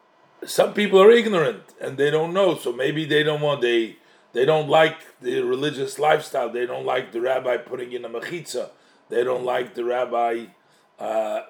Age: 50-69